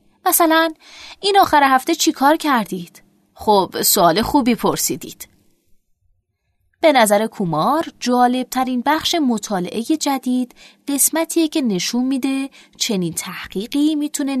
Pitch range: 190-285 Hz